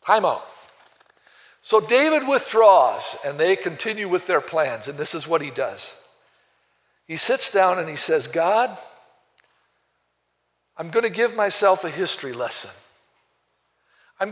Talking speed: 135 wpm